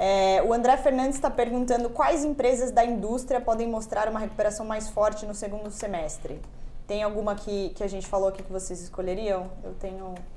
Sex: female